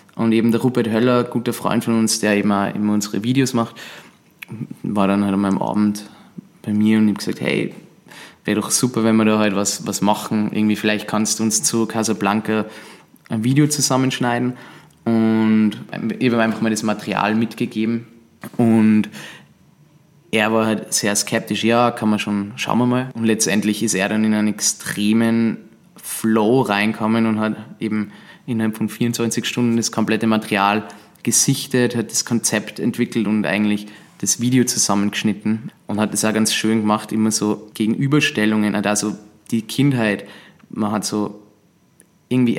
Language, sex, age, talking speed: German, male, 20-39, 160 wpm